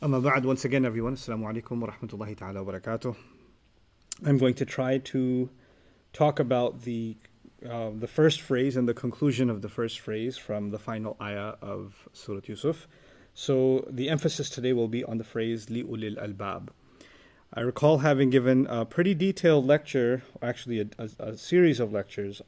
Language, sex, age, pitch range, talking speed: English, male, 30-49, 110-135 Hz, 170 wpm